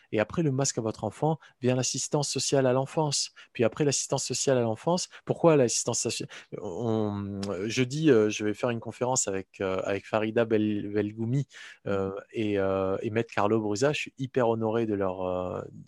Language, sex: French, male